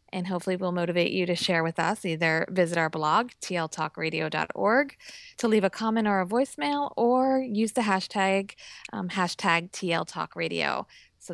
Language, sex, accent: English, female, American